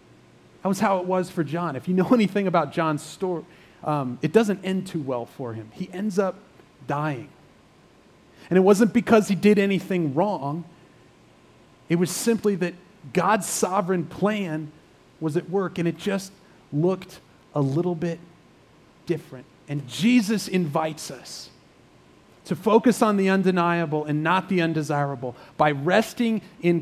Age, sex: 30-49, male